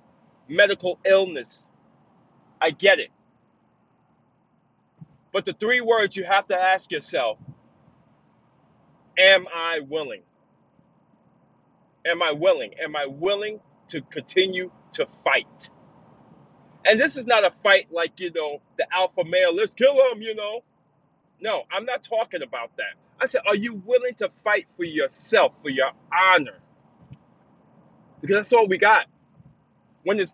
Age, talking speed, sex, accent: 30-49, 135 wpm, male, American